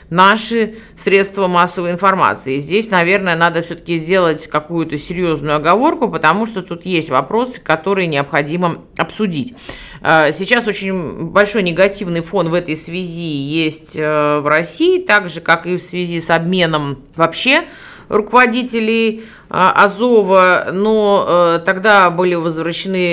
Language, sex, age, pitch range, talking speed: Russian, female, 30-49, 155-190 Hz, 120 wpm